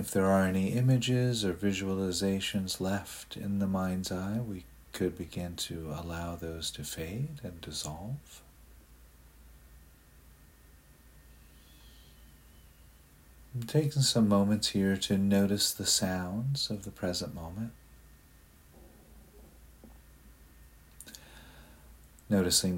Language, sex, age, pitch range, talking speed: English, male, 40-59, 75-100 Hz, 95 wpm